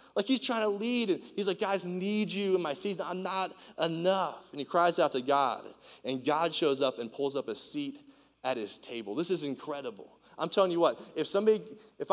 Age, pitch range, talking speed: 20-39, 145-205 Hz, 225 wpm